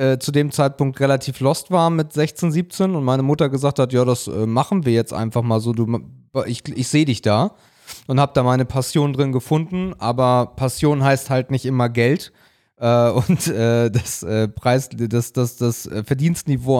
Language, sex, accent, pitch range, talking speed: German, male, German, 115-140 Hz, 175 wpm